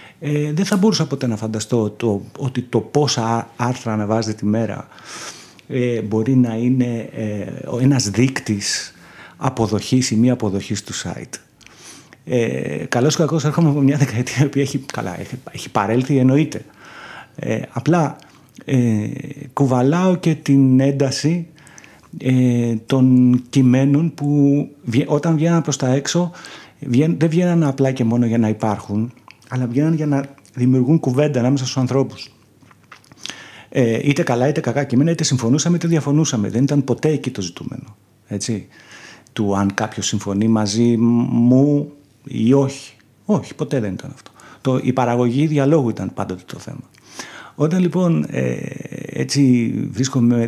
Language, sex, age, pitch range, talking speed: Greek, male, 50-69, 115-145 Hz, 135 wpm